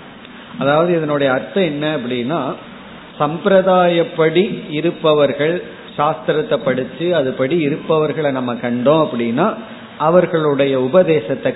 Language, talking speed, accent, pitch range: Tamil, 85 wpm, native, 140-195 Hz